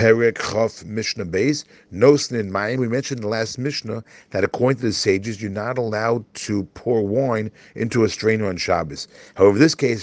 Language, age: English, 40-59